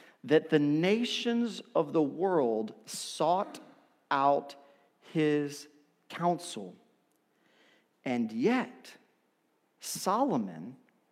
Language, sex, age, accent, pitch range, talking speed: English, male, 50-69, American, 185-250 Hz, 70 wpm